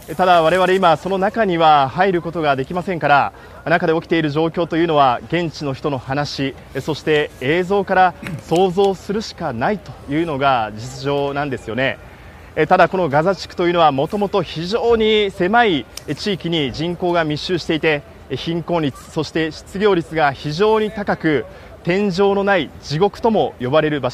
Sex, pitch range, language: male, 150-195 Hz, Japanese